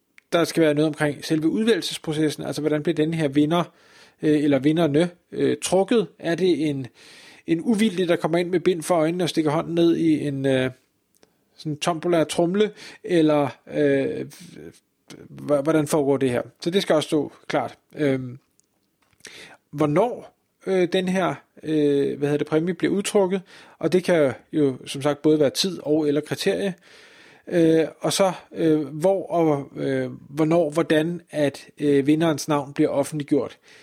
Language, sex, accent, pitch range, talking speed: Danish, male, native, 145-170 Hz, 145 wpm